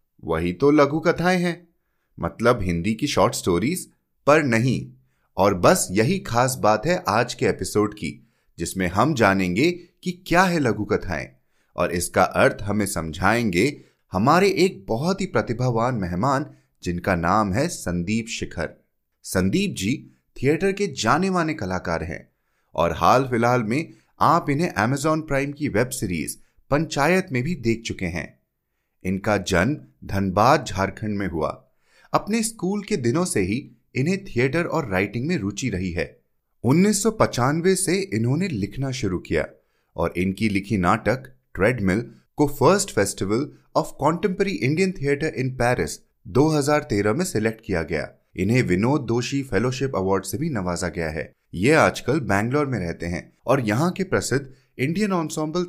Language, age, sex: Hindi, 30-49, male